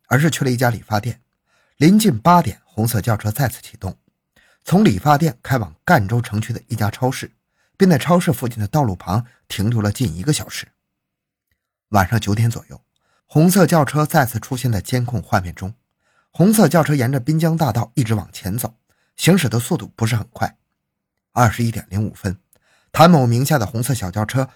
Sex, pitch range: male, 110-150 Hz